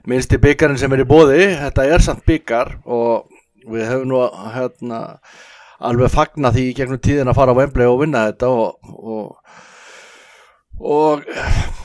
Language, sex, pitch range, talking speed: English, male, 120-145 Hz, 150 wpm